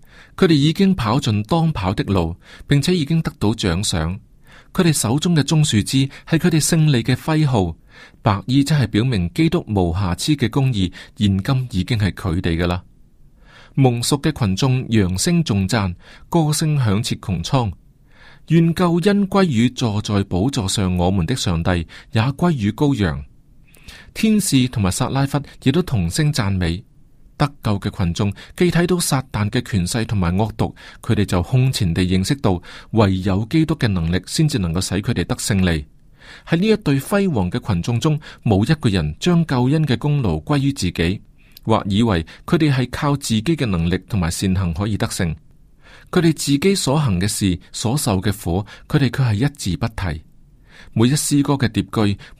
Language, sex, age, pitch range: Chinese, male, 30-49, 95-145 Hz